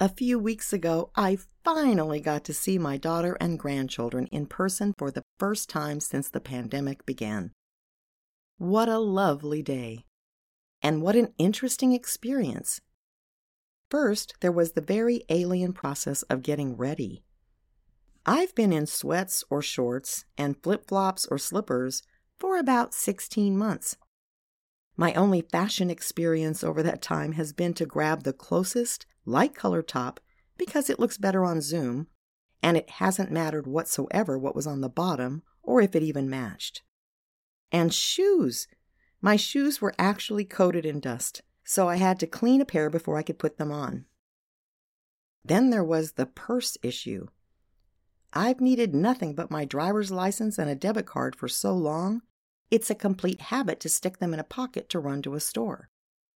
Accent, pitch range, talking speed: American, 145-210 Hz, 160 wpm